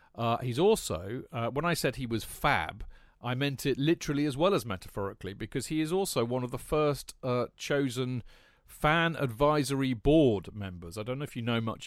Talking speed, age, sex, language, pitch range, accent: 195 wpm, 40-59, male, English, 105-135 Hz, British